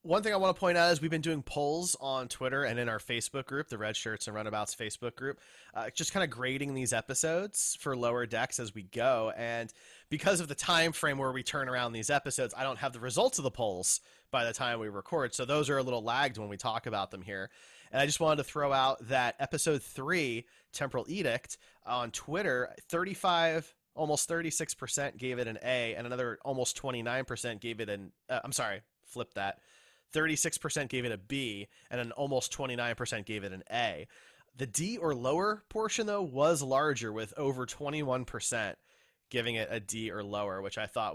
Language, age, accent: English, 30-49, American